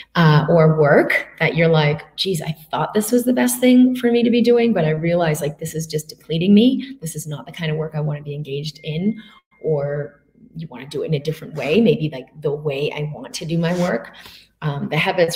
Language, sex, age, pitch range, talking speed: English, female, 30-49, 150-175 Hz, 250 wpm